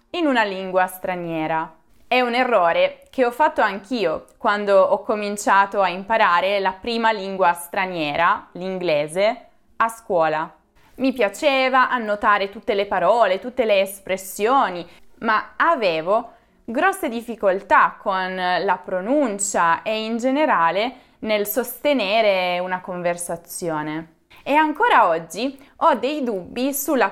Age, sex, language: 20-39, female, Italian